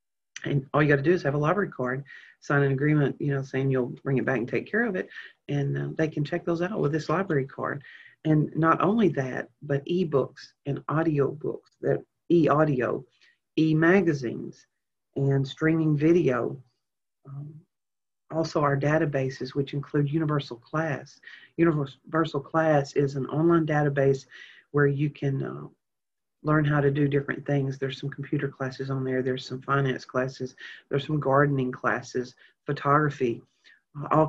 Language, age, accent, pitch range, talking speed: English, 40-59, American, 135-155 Hz, 160 wpm